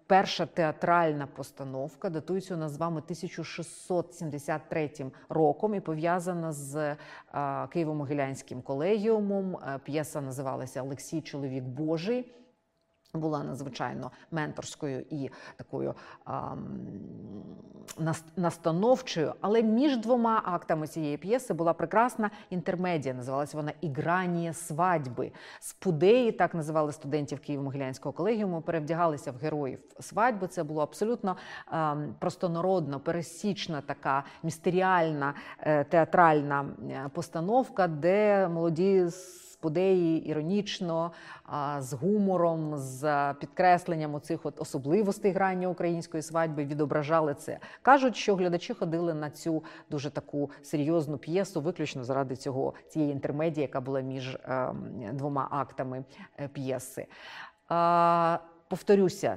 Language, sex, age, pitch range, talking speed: Ukrainian, female, 30-49, 145-180 Hz, 100 wpm